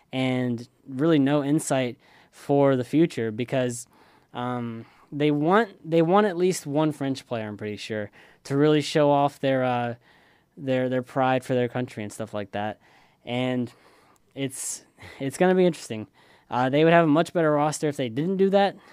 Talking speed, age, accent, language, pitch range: 180 wpm, 10-29, American, English, 125-155 Hz